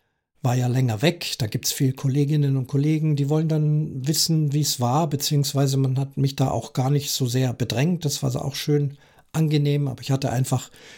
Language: German